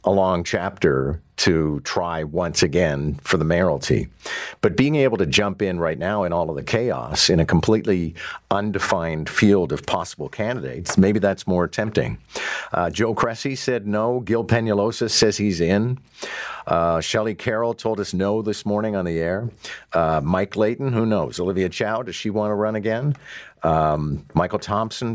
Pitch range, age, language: 90-110 Hz, 50-69, English